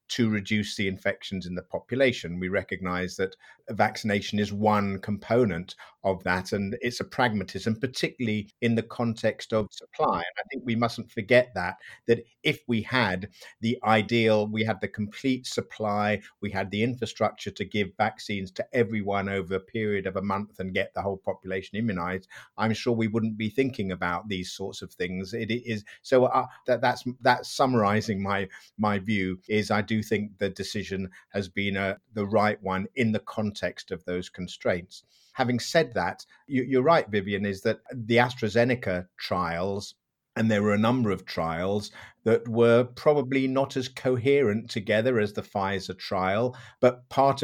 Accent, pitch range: British, 95-120 Hz